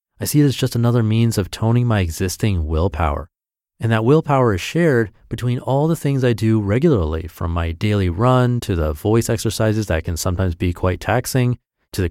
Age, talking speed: 30-49, 200 wpm